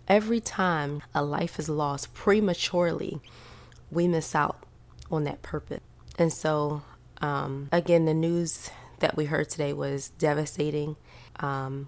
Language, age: English, 20-39